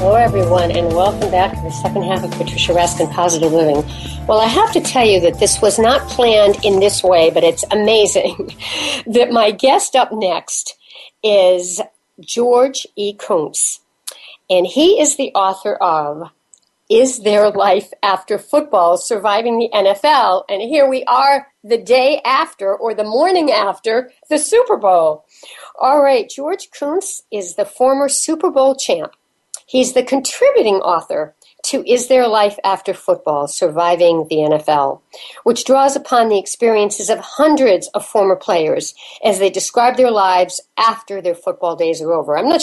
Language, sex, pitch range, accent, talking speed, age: English, female, 195-275 Hz, American, 160 wpm, 60-79